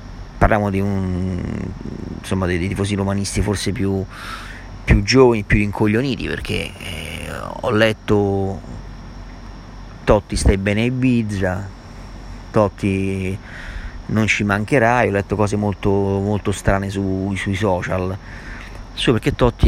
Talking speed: 120 wpm